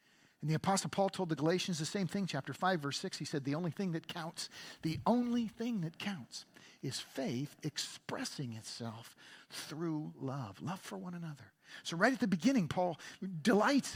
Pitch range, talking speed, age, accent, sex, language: 155-230 Hz, 185 wpm, 50-69, American, male, English